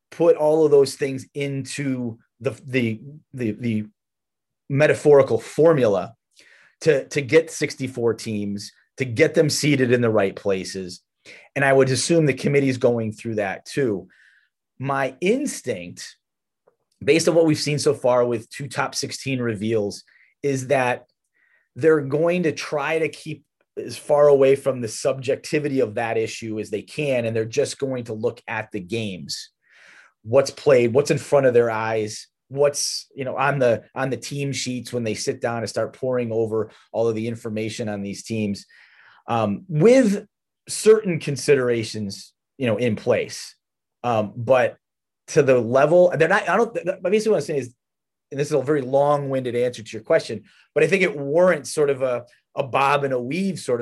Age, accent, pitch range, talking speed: 30-49, American, 115-145 Hz, 175 wpm